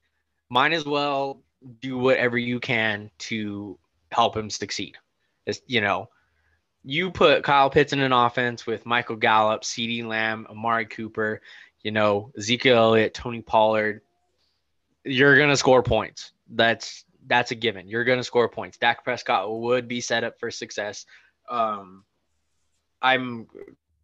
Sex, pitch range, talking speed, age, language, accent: male, 110-140 Hz, 135 wpm, 20-39, English, American